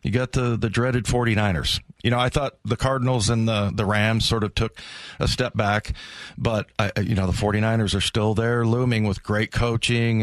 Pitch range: 105-120 Hz